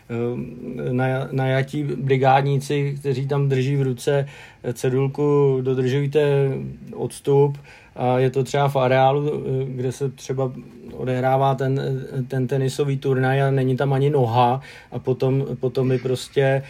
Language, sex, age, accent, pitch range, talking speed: Czech, male, 40-59, native, 130-140 Hz, 125 wpm